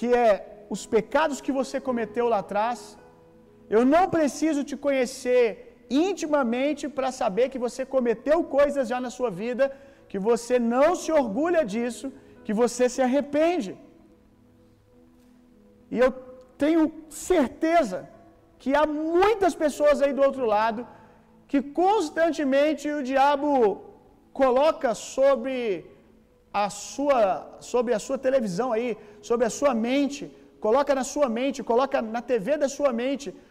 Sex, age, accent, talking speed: male, 40-59, Brazilian, 135 wpm